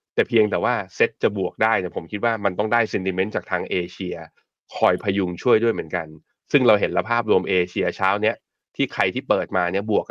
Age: 20-39